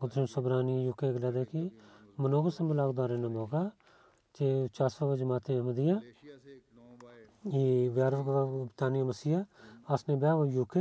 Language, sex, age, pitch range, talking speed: Bulgarian, male, 40-59, 120-140 Hz, 145 wpm